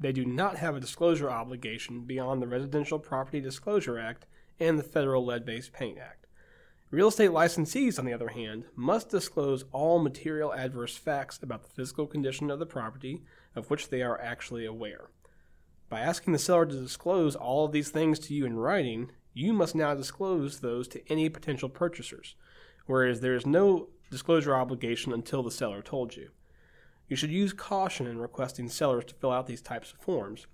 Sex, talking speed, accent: male, 185 wpm, American